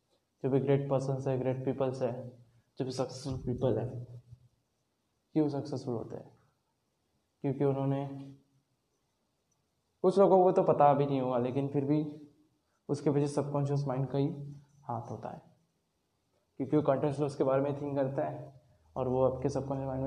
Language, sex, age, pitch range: Hindi, male, 20-39, 125-140 Hz